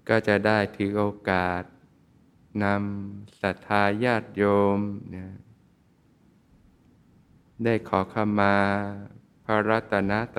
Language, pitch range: Thai, 100-115 Hz